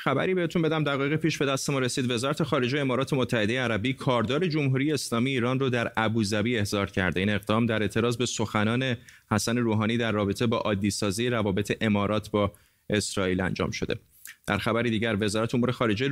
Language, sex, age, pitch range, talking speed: Persian, male, 30-49, 105-140 Hz, 175 wpm